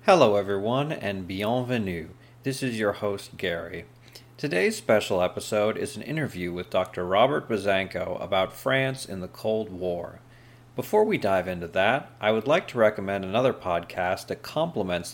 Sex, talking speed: male, 155 wpm